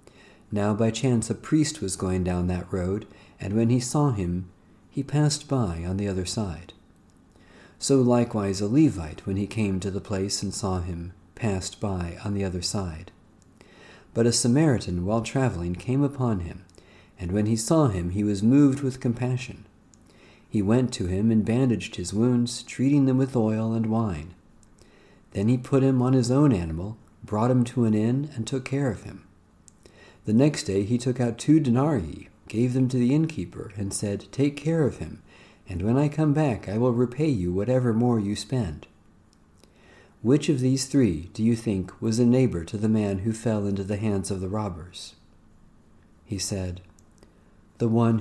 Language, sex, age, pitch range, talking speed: English, male, 40-59, 95-120 Hz, 185 wpm